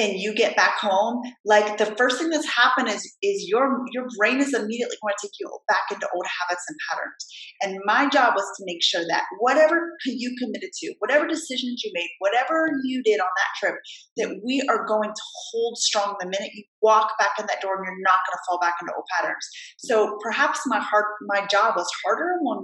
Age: 30-49